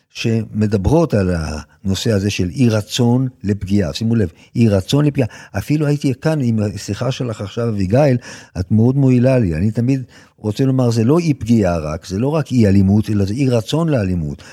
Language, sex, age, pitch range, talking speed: Hebrew, male, 50-69, 100-135 Hz, 180 wpm